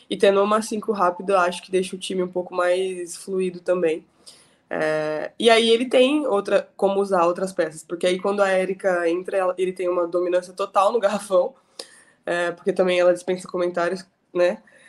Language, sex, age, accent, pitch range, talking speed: Portuguese, female, 20-39, Brazilian, 180-220 Hz, 180 wpm